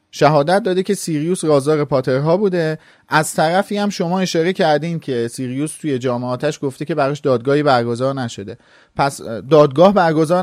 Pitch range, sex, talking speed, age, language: 130-170 Hz, male, 155 wpm, 30-49, Persian